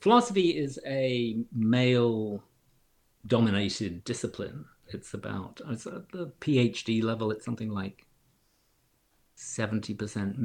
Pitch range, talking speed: 100-140 Hz, 85 wpm